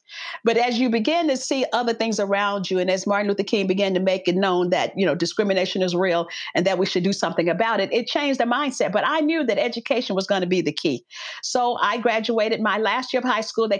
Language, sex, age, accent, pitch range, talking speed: English, female, 50-69, American, 195-275 Hz, 255 wpm